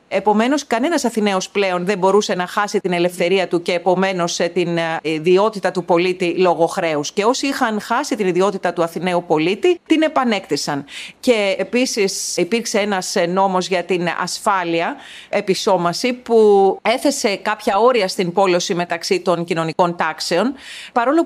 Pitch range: 180-235 Hz